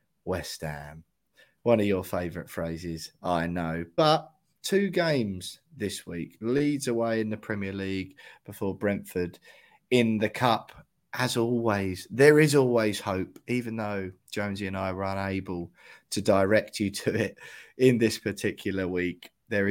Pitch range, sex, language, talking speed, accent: 95-115 Hz, male, English, 145 wpm, British